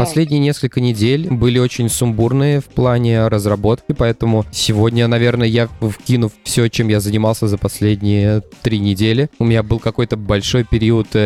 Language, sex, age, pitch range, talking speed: Russian, male, 20-39, 105-120 Hz, 150 wpm